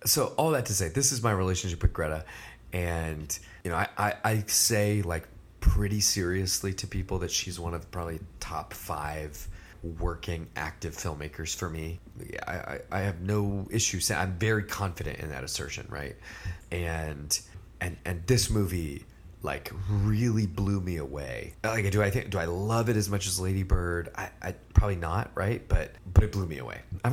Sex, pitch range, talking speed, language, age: male, 85-105 Hz, 185 wpm, English, 30-49